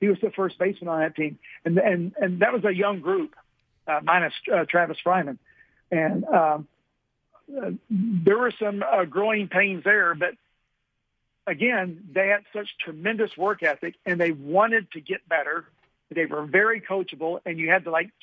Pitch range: 165-205 Hz